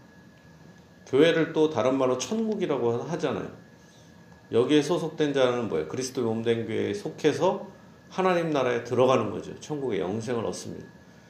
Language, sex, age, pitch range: Korean, male, 40-59, 120-165 Hz